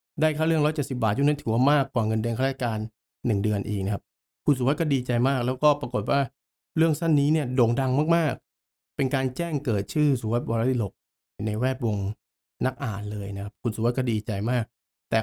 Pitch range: 110-145 Hz